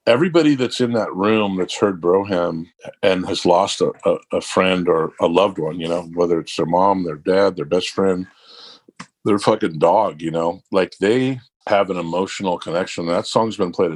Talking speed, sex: 190 wpm, male